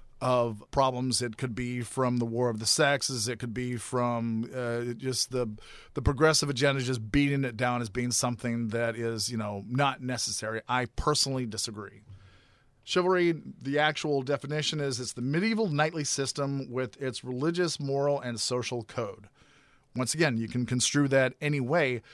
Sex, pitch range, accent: male, 120-150 Hz, American